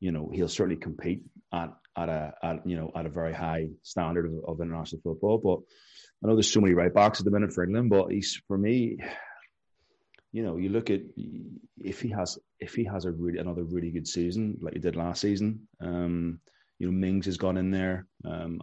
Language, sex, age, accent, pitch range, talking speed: English, male, 30-49, British, 85-100 Hz, 220 wpm